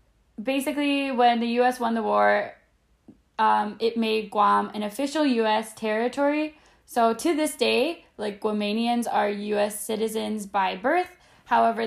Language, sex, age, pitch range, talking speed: English, female, 10-29, 210-255 Hz, 135 wpm